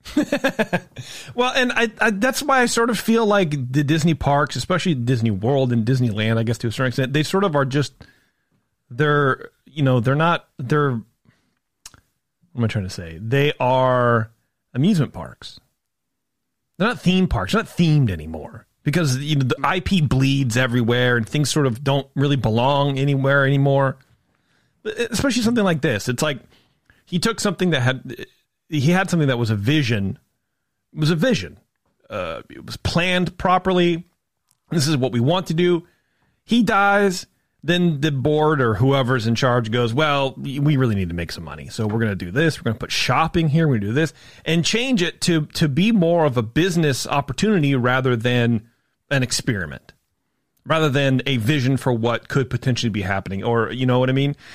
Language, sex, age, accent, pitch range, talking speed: English, male, 30-49, American, 125-170 Hz, 185 wpm